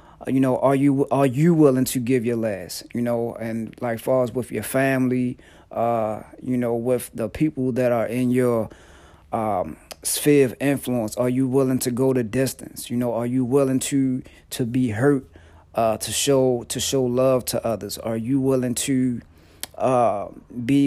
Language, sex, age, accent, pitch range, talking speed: English, male, 30-49, American, 115-130 Hz, 185 wpm